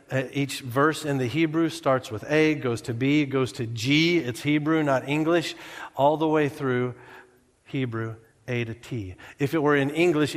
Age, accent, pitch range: 40-59, American, 120-145 Hz